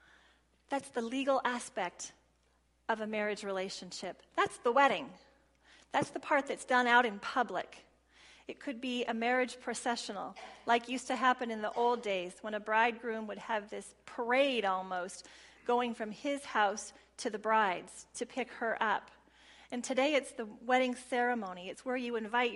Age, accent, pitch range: 40-59, American, 205-255 Hz